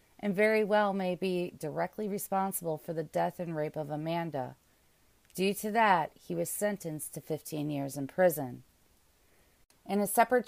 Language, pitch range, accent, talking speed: English, 160-205 Hz, American, 160 wpm